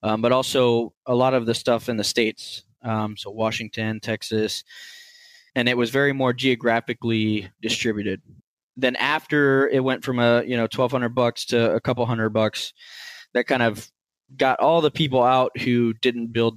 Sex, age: male, 20-39